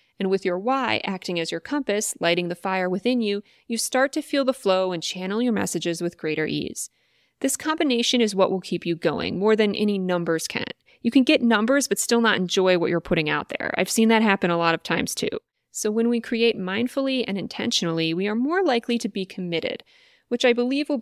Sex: female